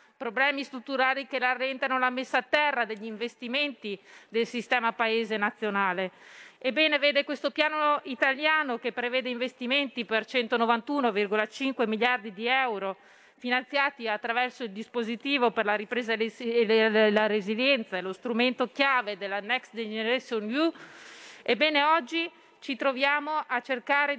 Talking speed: 125 wpm